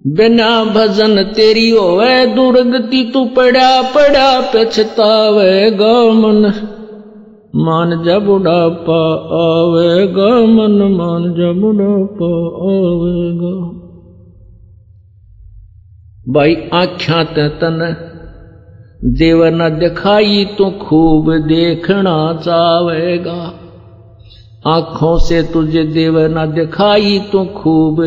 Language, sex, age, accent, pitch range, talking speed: Hindi, male, 50-69, native, 160-210 Hz, 80 wpm